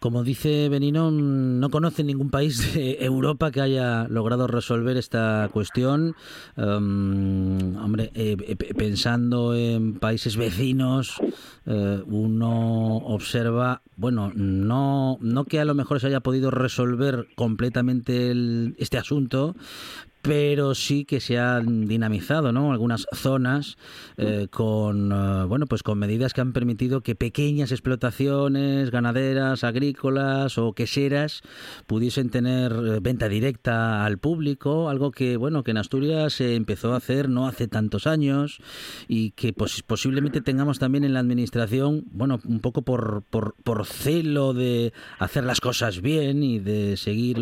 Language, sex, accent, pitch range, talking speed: Spanish, male, Spanish, 115-135 Hz, 140 wpm